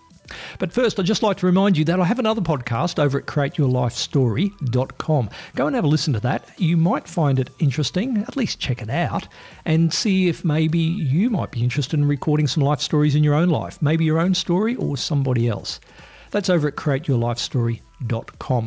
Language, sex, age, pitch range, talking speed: English, male, 50-69, 125-175 Hz, 195 wpm